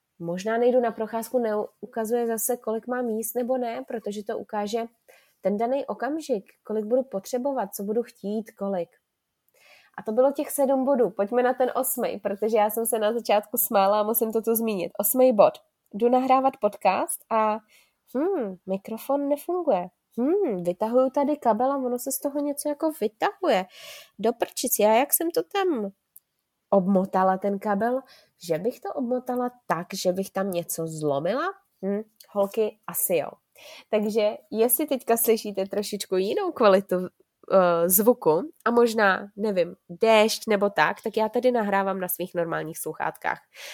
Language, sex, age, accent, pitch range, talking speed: Czech, female, 20-39, native, 195-255 Hz, 150 wpm